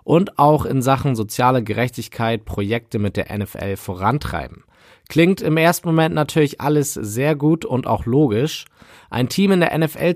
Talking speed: 160 wpm